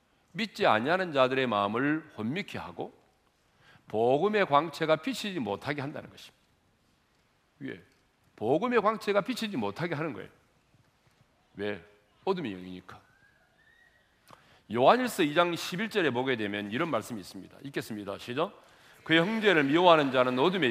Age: 40-59